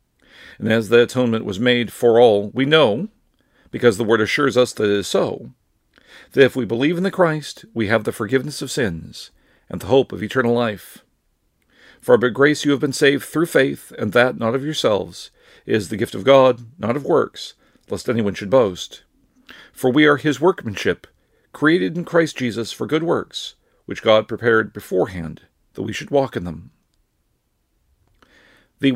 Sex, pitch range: male, 105-145 Hz